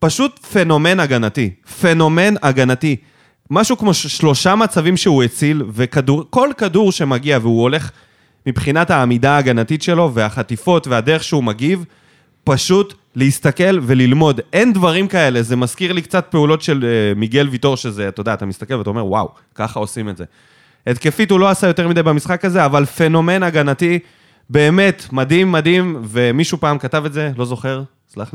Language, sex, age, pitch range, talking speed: Hebrew, male, 20-39, 125-170 Hz, 155 wpm